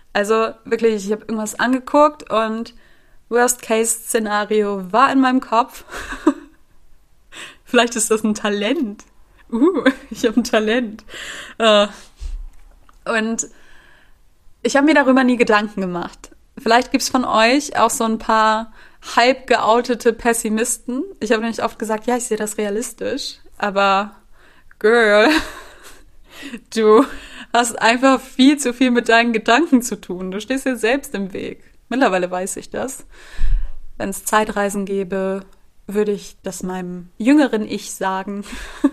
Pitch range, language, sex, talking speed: 205-245 Hz, German, female, 135 wpm